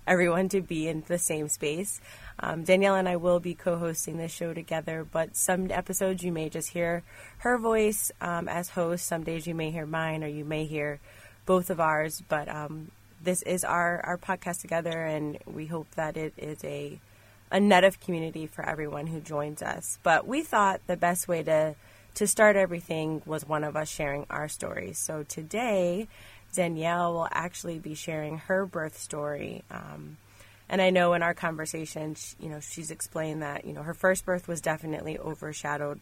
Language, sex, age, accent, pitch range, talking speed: English, female, 20-39, American, 150-175 Hz, 190 wpm